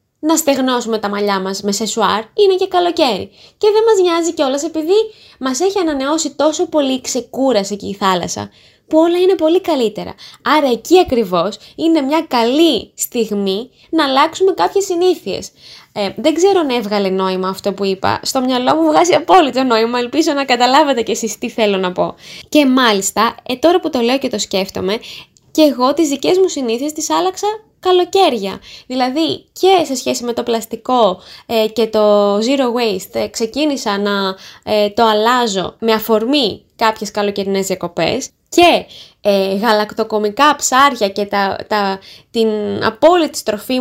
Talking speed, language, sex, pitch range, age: 160 wpm, Greek, female, 210-320 Hz, 20-39